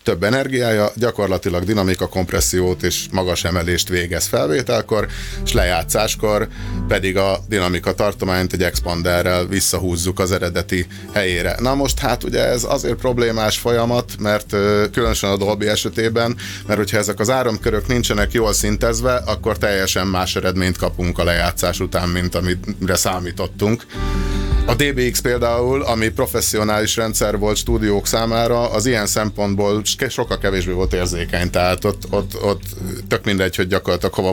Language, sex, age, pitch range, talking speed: Hungarian, male, 30-49, 90-110 Hz, 140 wpm